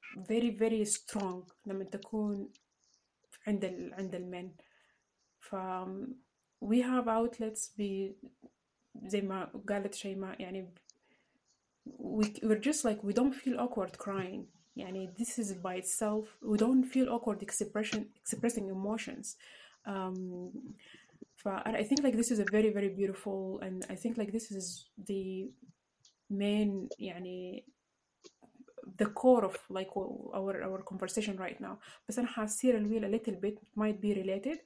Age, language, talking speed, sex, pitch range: 20-39, English, 110 wpm, female, 195-230 Hz